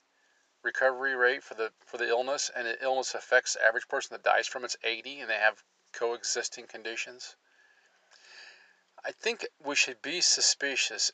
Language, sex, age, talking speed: English, male, 40-59, 160 wpm